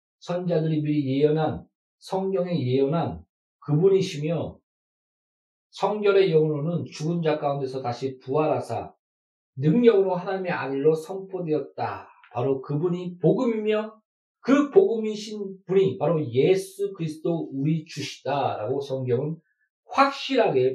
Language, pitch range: Korean, 145-195 Hz